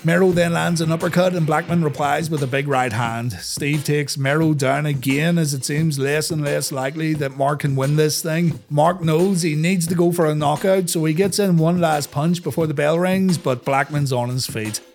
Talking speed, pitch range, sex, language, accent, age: 225 wpm, 135-170 Hz, male, English, Irish, 30-49